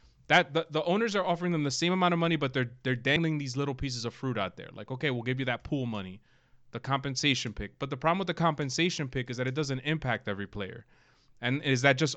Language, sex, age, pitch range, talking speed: English, male, 20-39, 120-145 Hz, 255 wpm